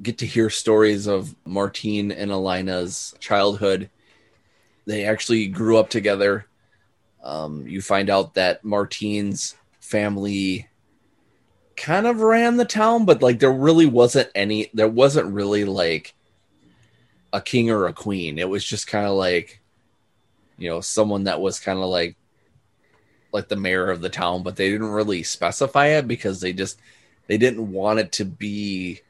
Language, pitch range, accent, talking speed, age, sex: English, 95-110 Hz, American, 155 wpm, 20-39, male